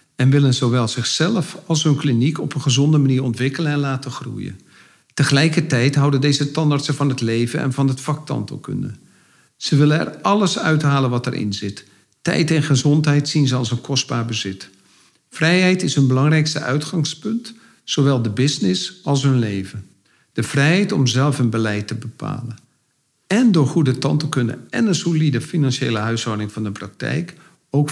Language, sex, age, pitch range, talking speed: Dutch, male, 50-69, 120-150 Hz, 165 wpm